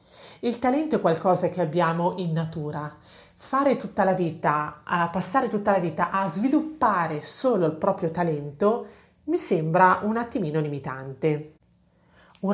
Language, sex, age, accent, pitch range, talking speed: Italian, female, 40-59, native, 160-210 Hz, 135 wpm